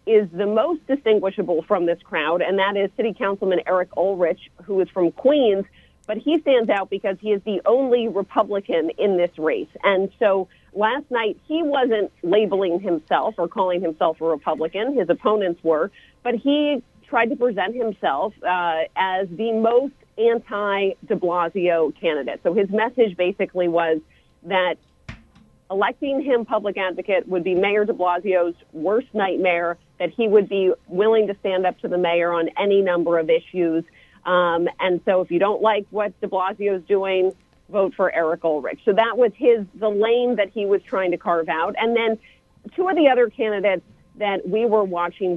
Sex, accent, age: female, American, 40-59